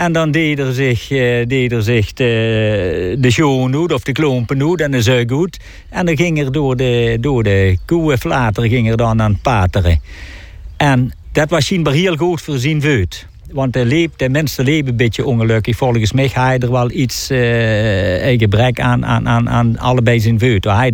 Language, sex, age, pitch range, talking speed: Dutch, male, 60-79, 115-160 Hz, 205 wpm